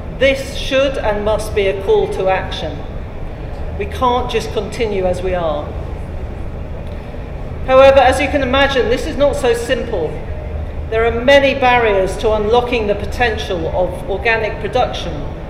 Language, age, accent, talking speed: English, 40-59, British, 145 wpm